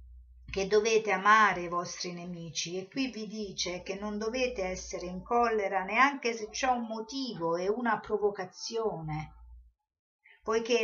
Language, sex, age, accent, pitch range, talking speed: Italian, female, 50-69, native, 190-225 Hz, 140 wpm